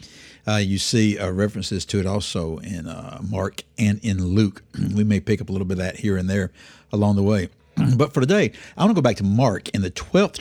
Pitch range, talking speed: 100-125 Hz, 240 wpm